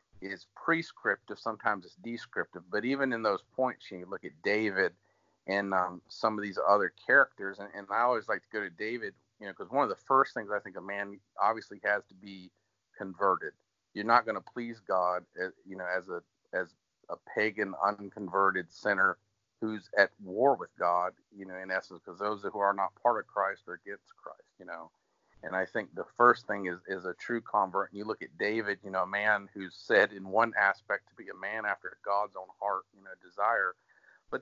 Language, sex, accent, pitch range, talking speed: English, male, American, 95-110 Hz, 210 wpm